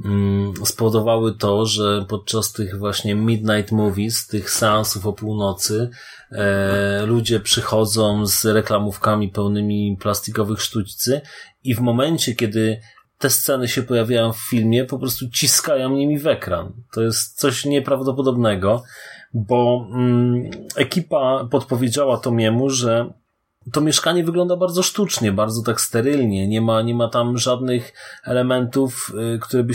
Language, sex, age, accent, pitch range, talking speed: Polish, male, 30-49, native, 105-130 Hz, 125 wpm